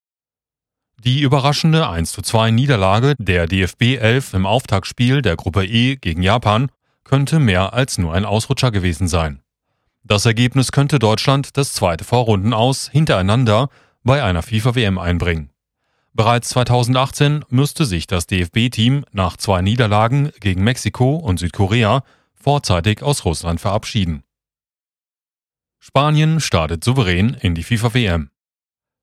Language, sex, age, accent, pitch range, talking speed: German, male, 40-59, German, 95-130 Hz, 115 wpm